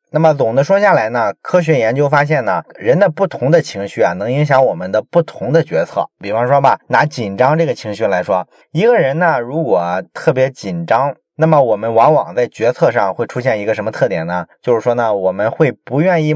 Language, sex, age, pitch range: Chinese, male, 20-39, 125-170 Hz